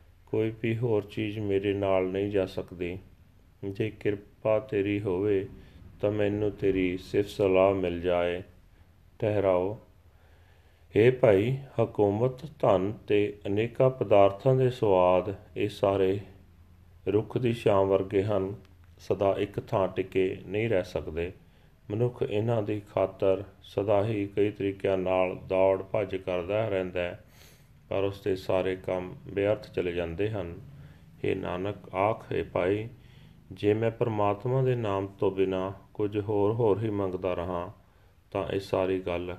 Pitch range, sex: 90-105 Hz, male